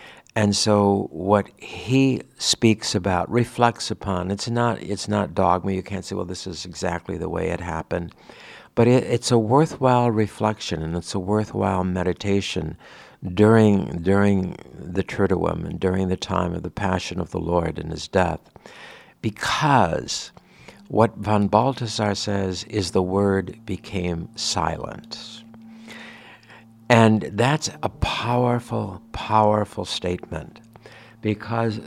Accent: American